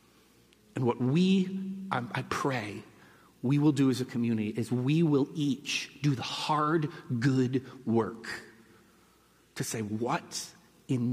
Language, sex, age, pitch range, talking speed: English, male, 30-49, 100-155 Hz, 135 wpm